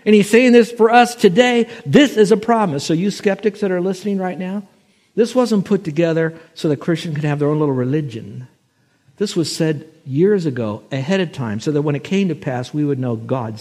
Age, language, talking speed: 60-79, English, 225 wpm